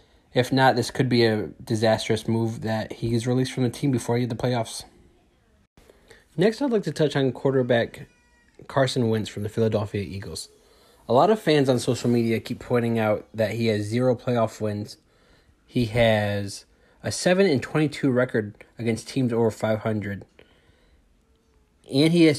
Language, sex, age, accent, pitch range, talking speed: English, male, 20-39, American, 110-135 Hz, 165 wpm